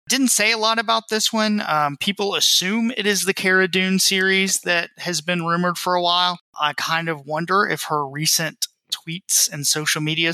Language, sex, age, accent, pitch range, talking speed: English, male, 20-39, American, 145-180 Hz, 195 wpm